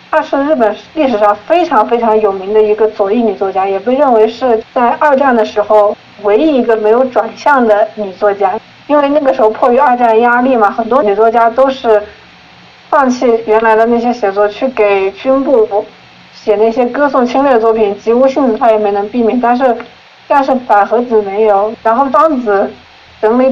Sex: female